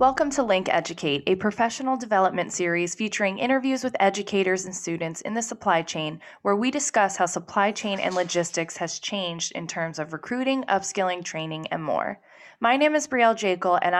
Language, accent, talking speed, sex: English, American, 180 wpm, female